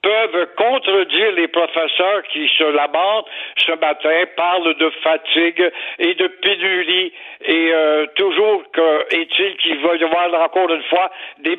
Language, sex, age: French, male, 60-79